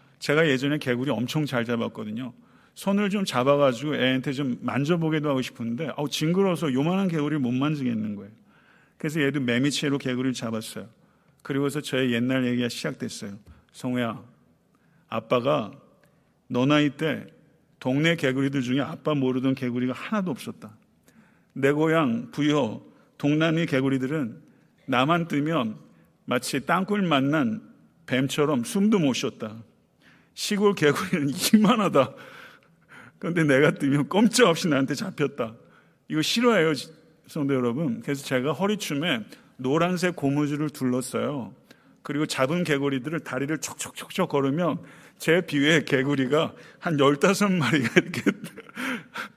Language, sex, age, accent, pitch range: Korean, male, 40-59, native, 130-165 Hz